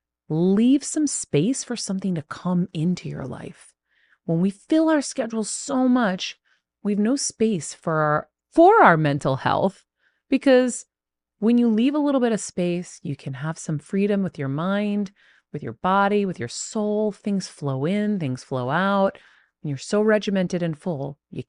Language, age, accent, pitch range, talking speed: English, 30-49, American, 135-200 Hz, 175 wpm